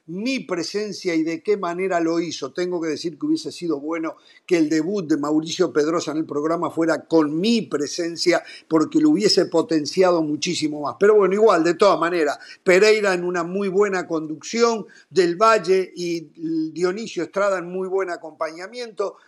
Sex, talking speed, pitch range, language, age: male, 170 wpm, 175-240 Hz, Spanish, 50-69